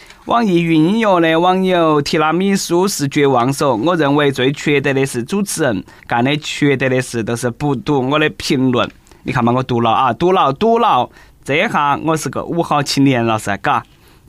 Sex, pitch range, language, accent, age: male, 125-165 Hz, Chinese, native, 20-39